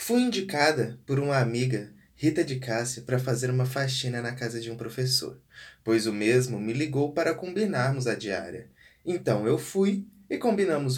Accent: Brazilian